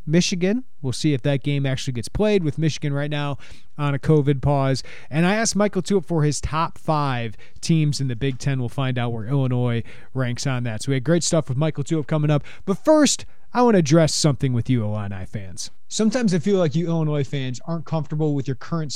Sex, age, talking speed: male, 30-49, 230 wpm